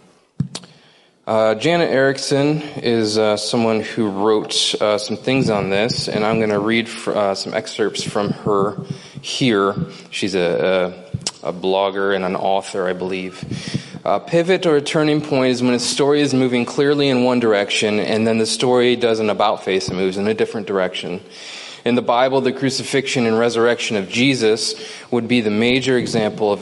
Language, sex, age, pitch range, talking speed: English, male, 20-39, 105-130 Hz, 180 wpm